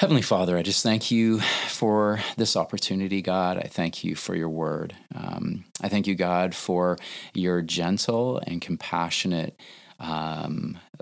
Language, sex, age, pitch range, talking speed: English, male, 30-49, 85-100 Hz, 145 wpm